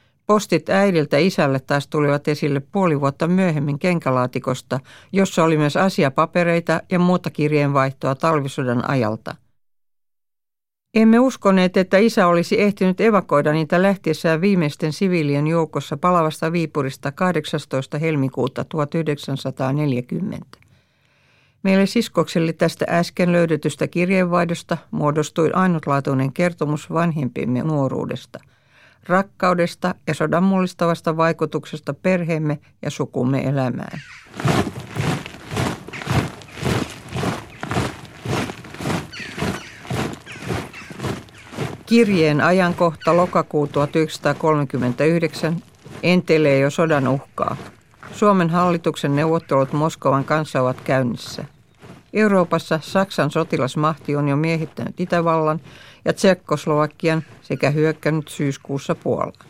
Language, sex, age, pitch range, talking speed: Finnish, female, 60-79, 145-175 Hz, 85 wpm